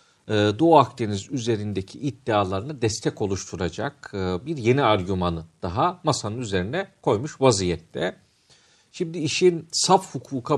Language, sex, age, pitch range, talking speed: Turkish, male, 50-69, 95-135 Hz, 100 wpm